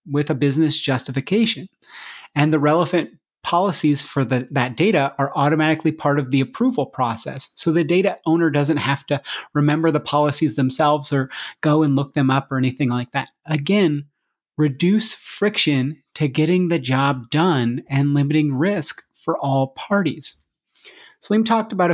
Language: English